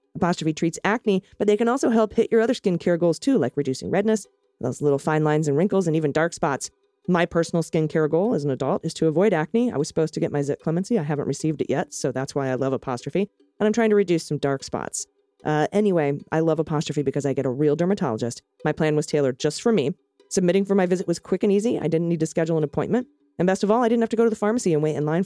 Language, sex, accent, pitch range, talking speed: English, female, American, 150-195 Hz, 270 wpm